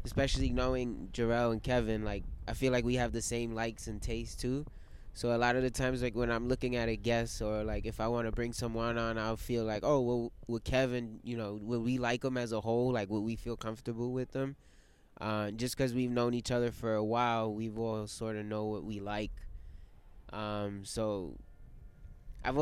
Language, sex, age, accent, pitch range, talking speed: English, male, 20-39, American, 110-130 Hz, 220 wpm